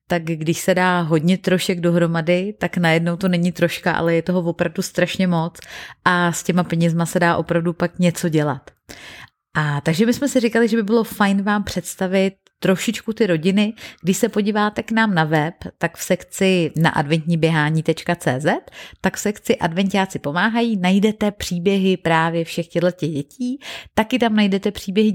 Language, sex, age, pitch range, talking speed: Czech, female, 30-49, 165-200 Hz, 165 wpm